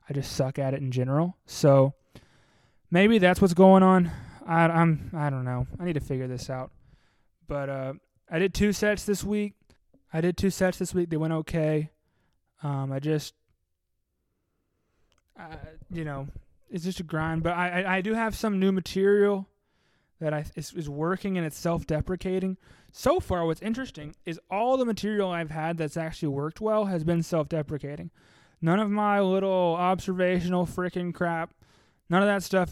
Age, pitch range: 20-39, 155-195 Hz